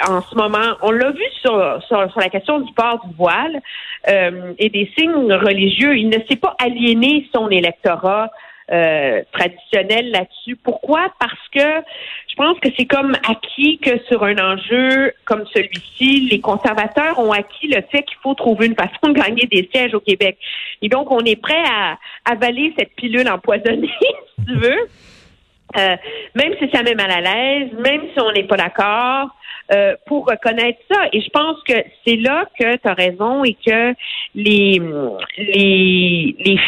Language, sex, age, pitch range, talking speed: French, female, 50-69, 195-275 Hz, 175 wpm